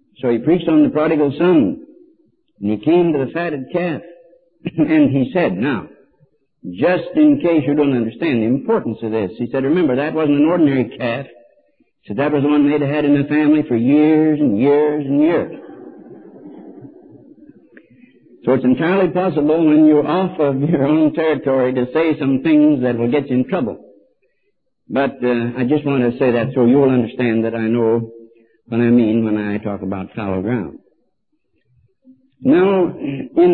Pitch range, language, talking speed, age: 130-185 Hz, English, 175 wpm, 60-79